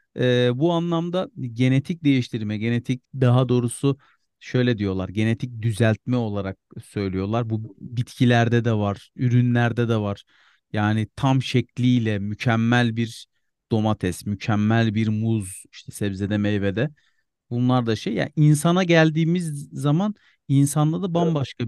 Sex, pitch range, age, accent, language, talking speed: male, 115-155 Hz, 40-59, native, Turkish, 125 wpm